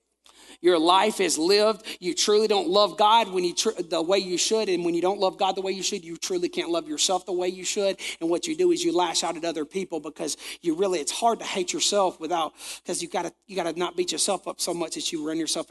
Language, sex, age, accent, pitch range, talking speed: English, male, 40-59, American, 170-210 Hz, 265 wpm